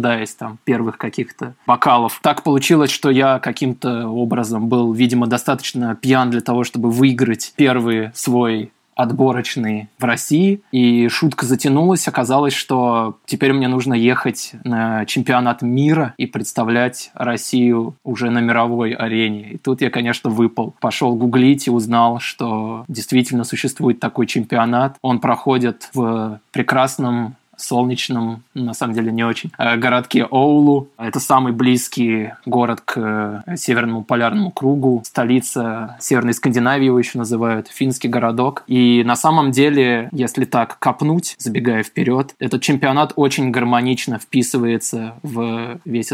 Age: 20-39